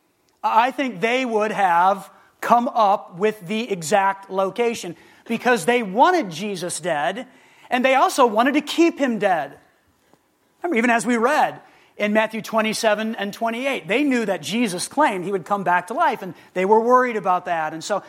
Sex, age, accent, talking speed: male, 30-49, American, 175 wpm